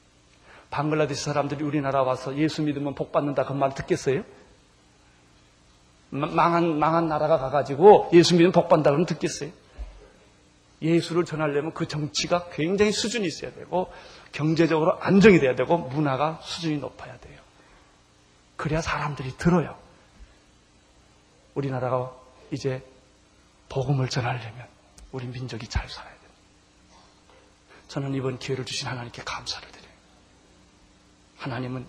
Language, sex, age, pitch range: Korean, male, 30-49, 100-155 Hz